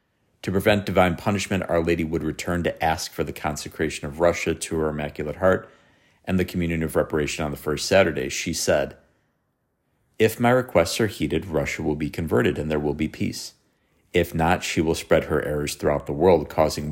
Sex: male